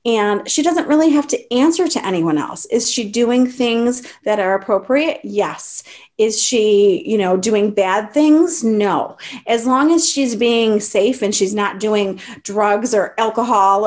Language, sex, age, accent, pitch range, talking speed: English, female, 30-49, American, 195-235 Hz, 170 wpm